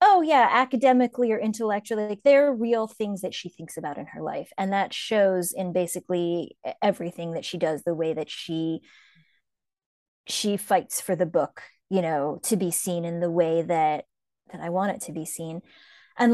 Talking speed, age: 190 wpm, 20-39